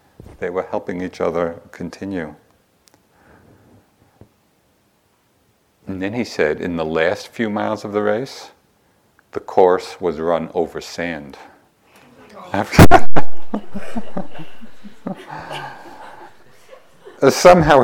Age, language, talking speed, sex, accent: 50-69, English, 85 wpm, male, American